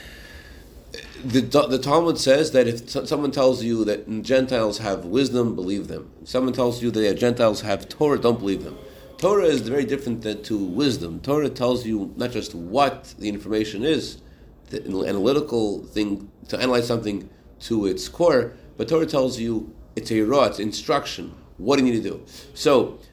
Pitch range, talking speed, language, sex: 120-165 Hz, 170 wpm, English, male